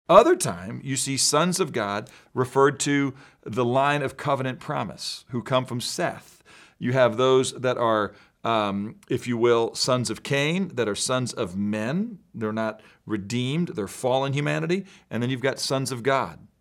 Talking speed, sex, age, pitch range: 175 wpm, male, 40-59, 115-150 Hz